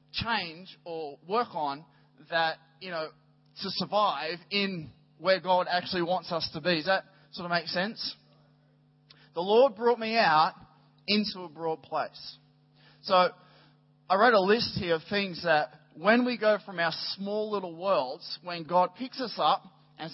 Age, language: 20-39, English